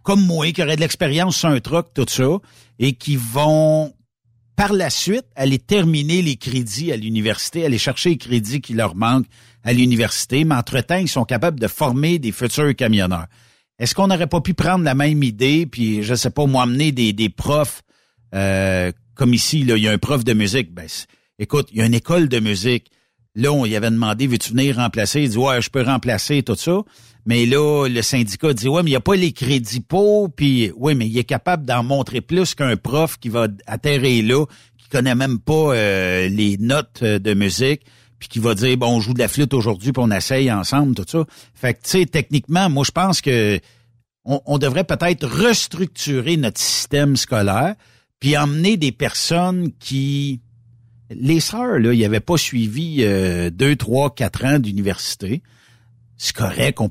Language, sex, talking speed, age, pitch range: French, male, 200 wpm, 60-79, 115-155 Hz